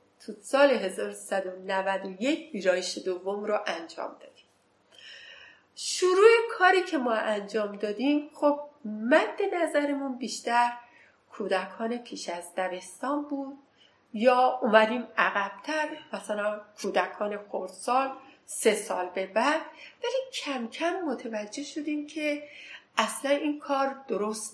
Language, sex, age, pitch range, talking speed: Persian, female, 40-59, 190-275 Hz, 105 wpm